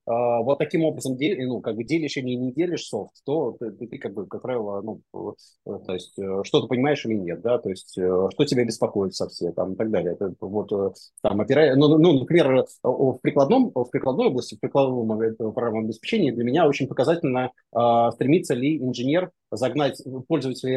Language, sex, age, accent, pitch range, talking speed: Russian, male, 20-39, native, 110-140 Hz, 175 wpm